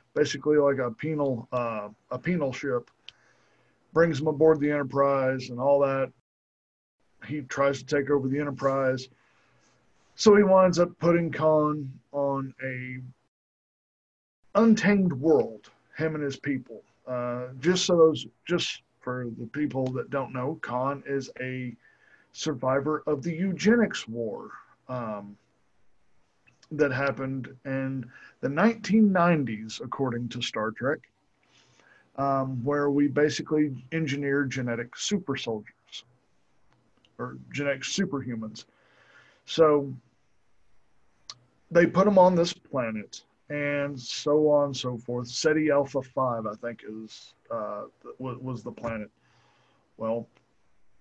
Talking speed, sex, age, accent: 120 wpm, male, 50-69, American